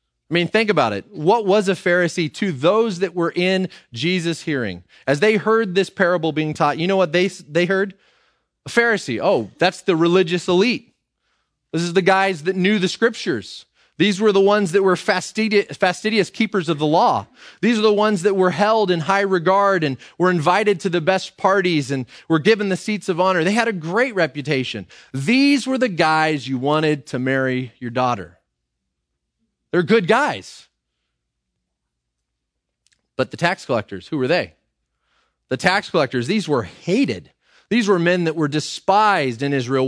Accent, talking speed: American, 180 wpm